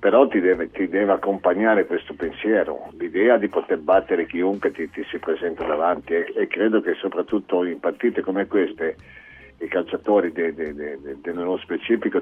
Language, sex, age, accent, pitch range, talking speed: Italian, male, 50-69, native, 95-120 Hz, 150 wpm